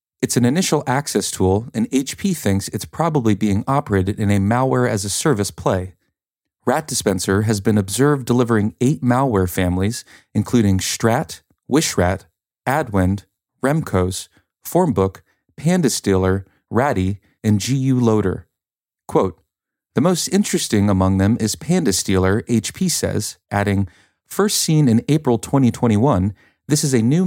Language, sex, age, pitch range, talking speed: English, male, 30-49, 95-130 Hz, 135 wpm